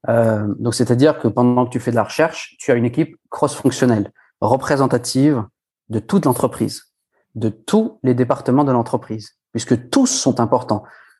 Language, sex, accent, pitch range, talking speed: French, male, French, 110-140 Hz, 160 wpm